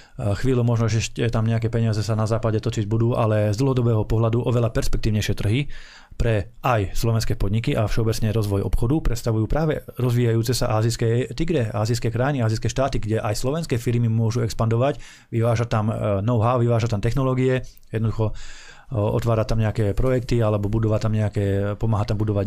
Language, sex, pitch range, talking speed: Slovak, male, 105-120 Hz, 160 wpm